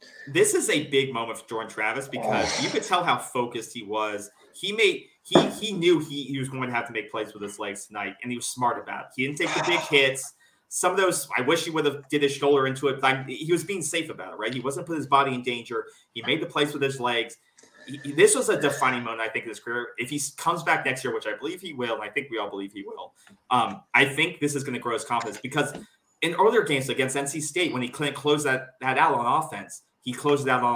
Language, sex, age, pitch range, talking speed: English, male, 30-49, 125-165 Hz, 275 wpm